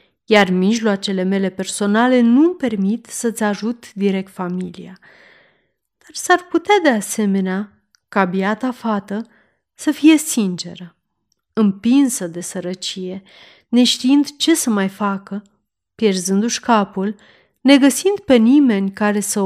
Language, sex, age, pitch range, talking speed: Romanian, female, 30-49, 195-250 Hz, 110 wpm